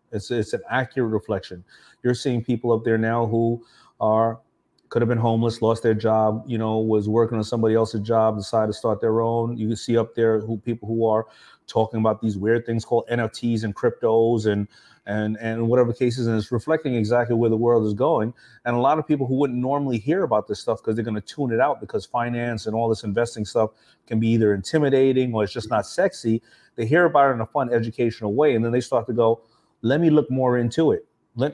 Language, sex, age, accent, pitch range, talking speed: English, male, 30-49, American, 110-130 Hz, 230 wpm